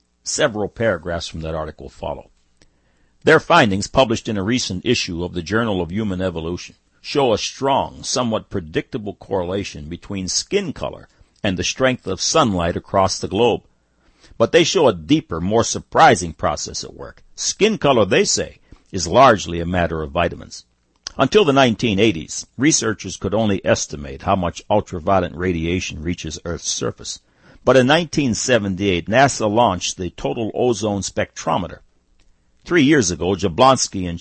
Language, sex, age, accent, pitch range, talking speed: English, male, 60-79, American, 85-110 Hz, 145 wpm